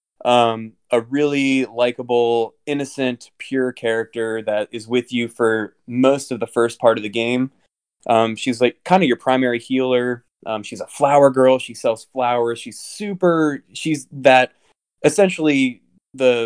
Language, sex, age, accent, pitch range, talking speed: English, male, 20-39, American, 110-130 Hz, 155 wpm